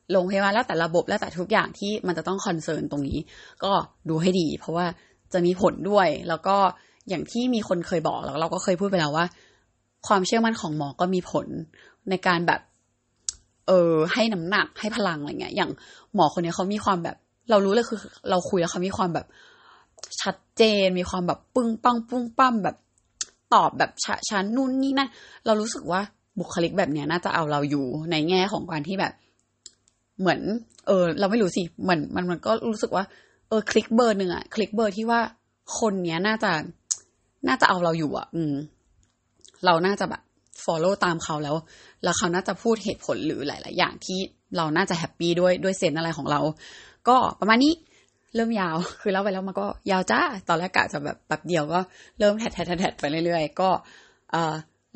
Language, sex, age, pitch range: Thai, female, 20-39, 165-210 Hz